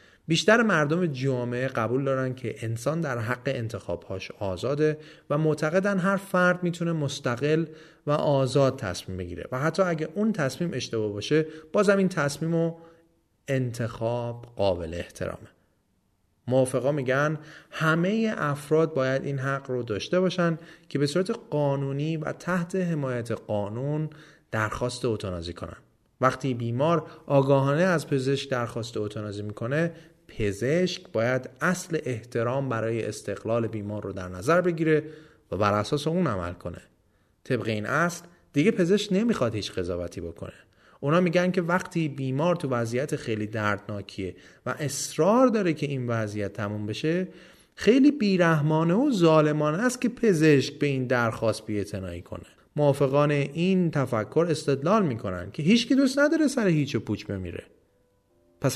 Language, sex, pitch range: Persian, male, 115-165 Hz